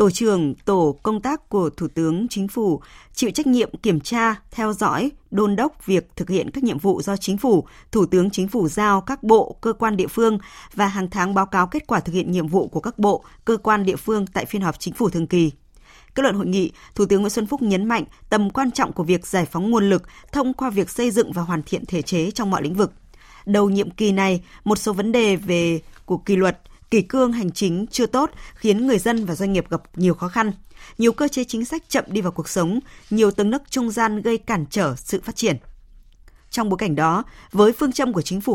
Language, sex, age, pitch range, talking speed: Vietnamese, female, 20-39, 180-230 Hz, 245 wpm